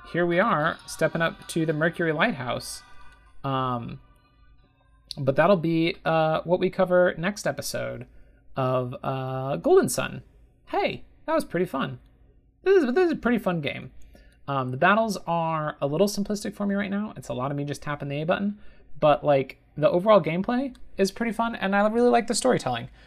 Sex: male